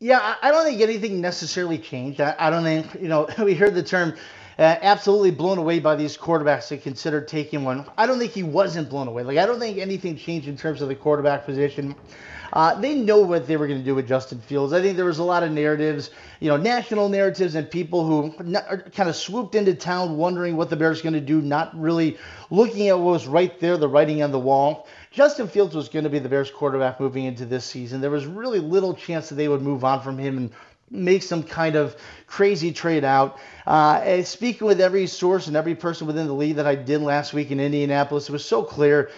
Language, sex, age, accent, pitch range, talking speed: English, male, 30-49, American, 145-190 Hz, 235 wpm